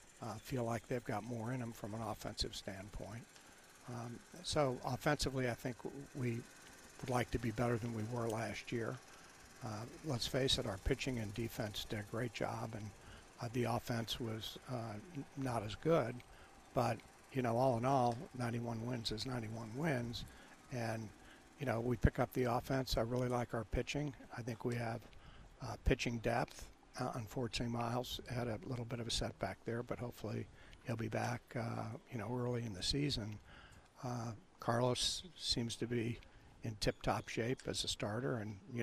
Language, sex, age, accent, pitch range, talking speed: English, male, 60-79, American, 110-125 Hz, 180 wpm